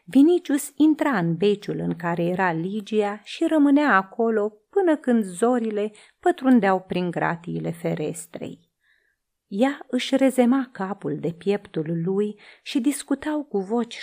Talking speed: 125 wpm